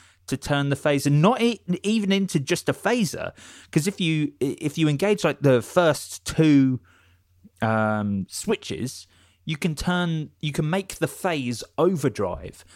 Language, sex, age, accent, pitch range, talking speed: English, male, 20-39, British, 120-160 Hz, 155 wpm